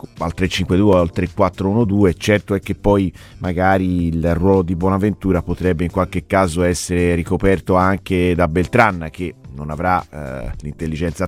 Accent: native